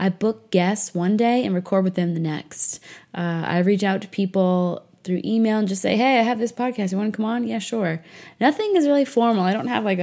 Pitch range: 180-235 Hz